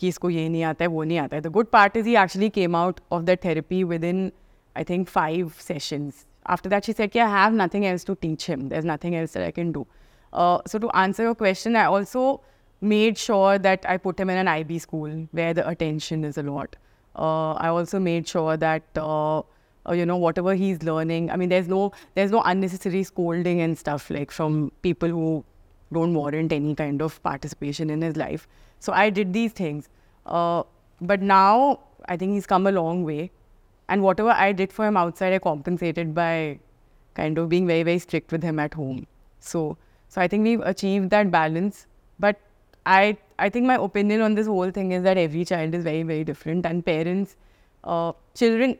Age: 20-39